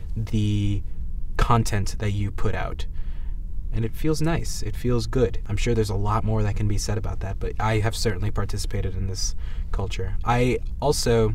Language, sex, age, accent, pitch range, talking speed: English, male, 20-39, American, 95-115 Hz, 185 wpm